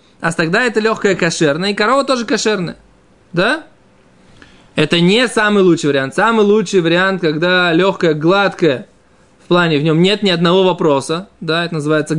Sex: male